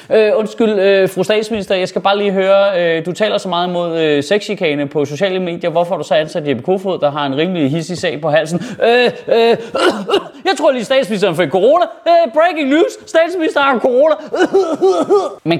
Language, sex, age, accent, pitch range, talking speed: Danish, male, 30-49, native, 170-235 Hz, 210 wpm